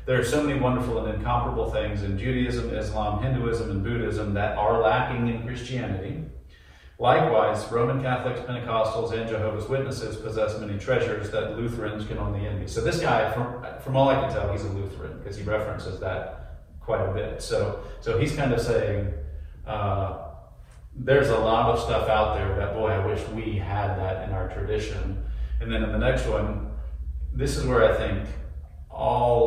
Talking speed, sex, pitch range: 180 wpm, male, 100-120 Hz